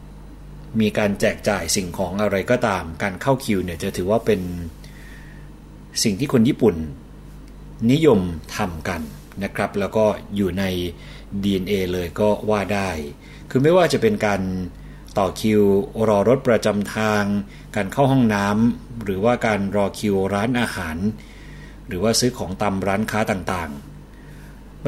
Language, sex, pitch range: Thai, male, 90-110 Hz